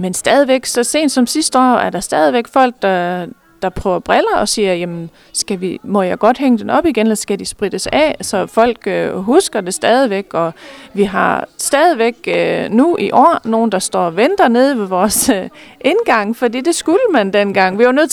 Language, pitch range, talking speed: Danish, 195-270 Hz, 210 wpm